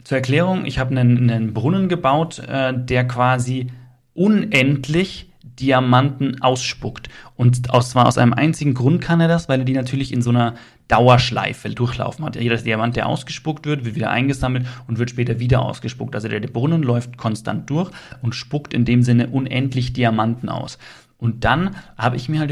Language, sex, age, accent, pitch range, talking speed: German, male, 30-49, German, 120-145 Hz, 180 wpm